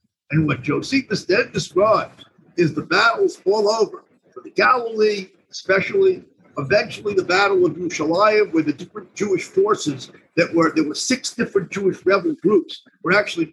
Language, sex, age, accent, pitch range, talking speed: English, male, 50-69, American, 155-240 Hz, 150 wpm